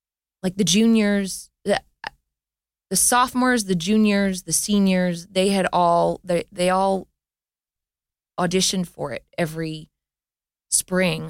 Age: 20-39